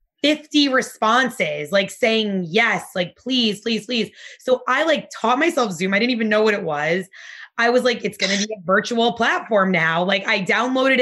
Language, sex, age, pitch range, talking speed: English, female, 20-39, 190-235 Hz, 195 wpm